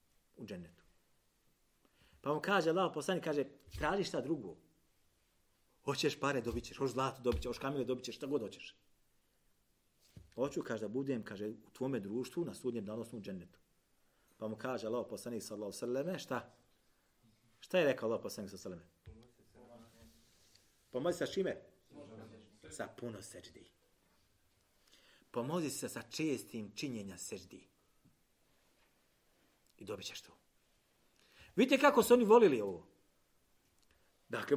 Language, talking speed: English, 135 wpm